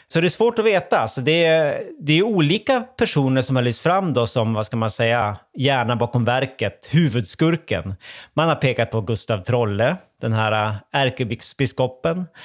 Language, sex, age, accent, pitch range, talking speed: Swedish, male, 30-49, Norwegian, 115-155 Hz, 175 wpm